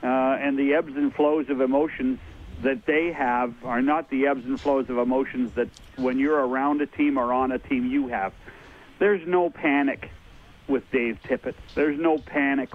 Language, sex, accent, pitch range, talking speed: English, male, American, 135-185 Hz, 190 wpm